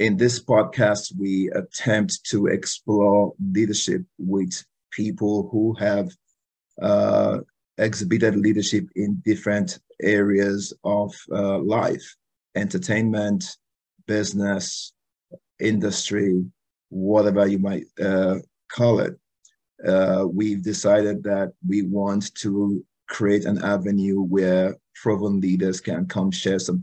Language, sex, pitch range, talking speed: English, male, 95-105 Hz, 105 wpm